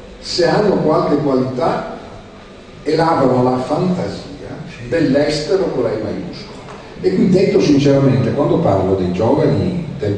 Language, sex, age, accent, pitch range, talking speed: Italian, male, 40-59, native, 115-155 Hz, 120 wpm